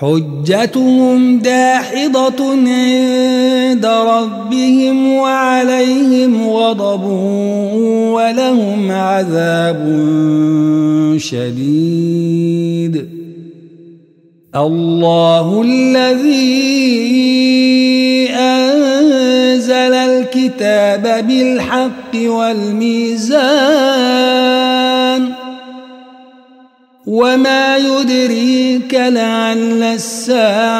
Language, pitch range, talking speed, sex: Arabic, 200-255 Hz, 35 wpm, male